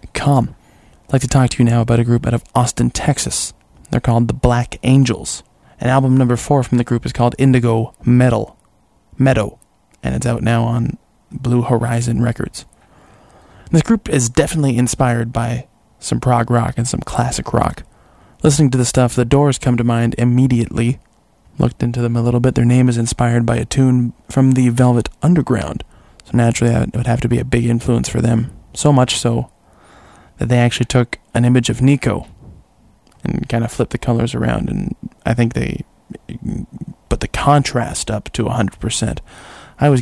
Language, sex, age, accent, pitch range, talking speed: English, male, 20-39, American, 115-125 Hz, 185 wpm